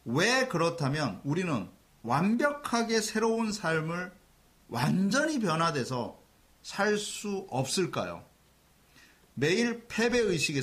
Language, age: Korean, 30-49